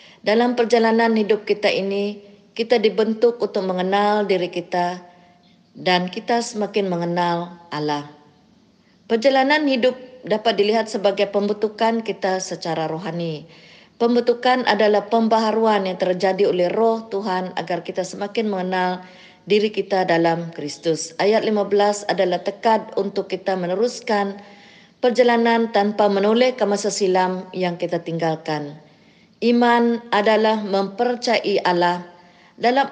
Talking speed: 115 wpm